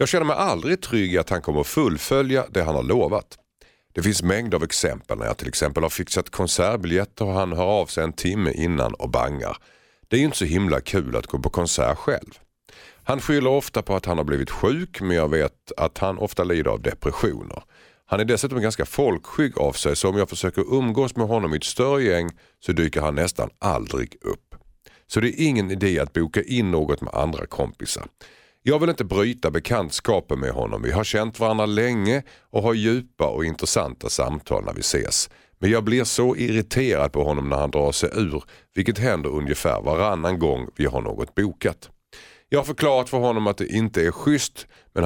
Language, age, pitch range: Swedish, 50-69, 80-125 Hz